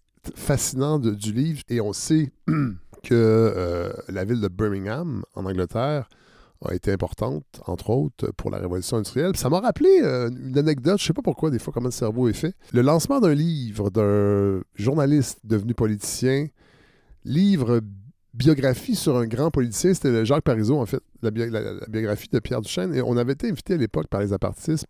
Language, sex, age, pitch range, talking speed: French, male, 50-69, 105-160 Hz, 195 wpm